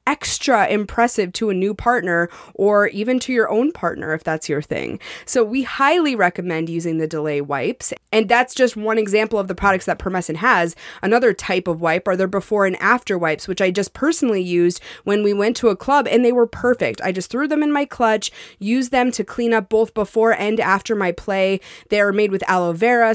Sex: female